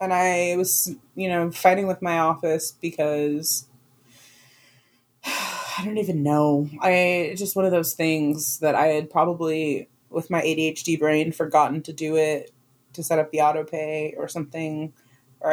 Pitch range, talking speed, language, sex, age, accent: 145-175 Hz, 160 wpm, English, female, 20-39, American